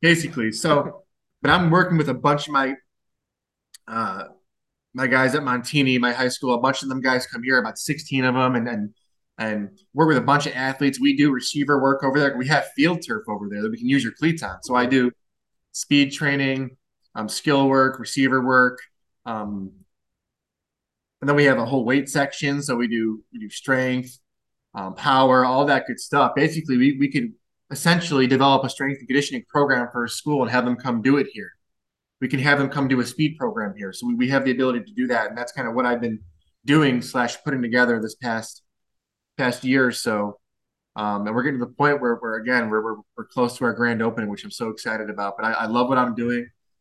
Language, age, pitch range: English, 20-39, 115-140 Hz